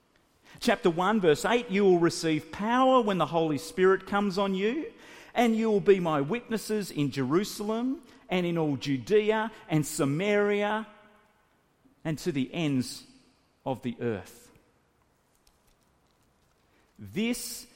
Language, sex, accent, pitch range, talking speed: English, male, Australian, 160-215 Hz, 125 wpm